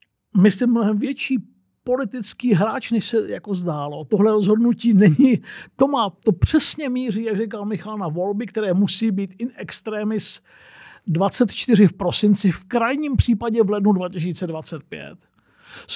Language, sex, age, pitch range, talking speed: Czech, male, 50-69, 190-235 Hz, 135 wpm